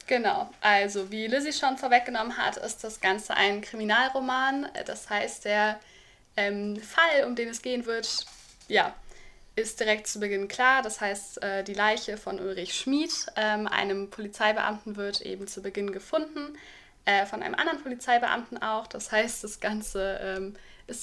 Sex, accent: female, German